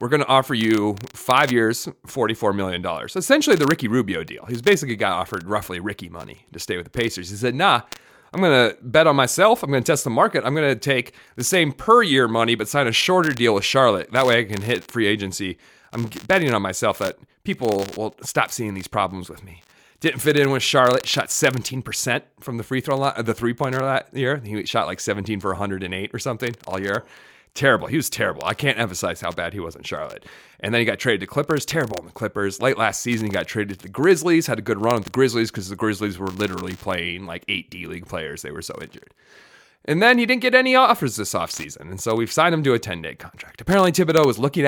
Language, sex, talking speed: English, male, 235 wpm